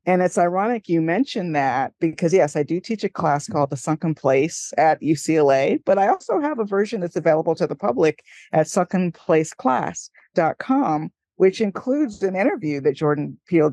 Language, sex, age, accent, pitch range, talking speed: English, female, 50-69, American, 150-185 Hz, 170 wpm